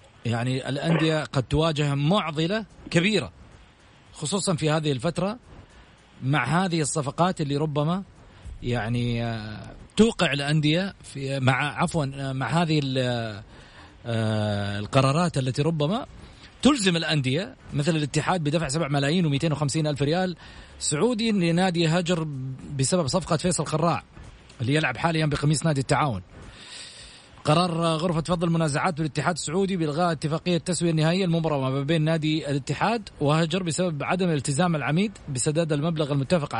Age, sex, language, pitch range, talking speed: 40-59, male, Arabic, 140-175 Hz, 120 wpm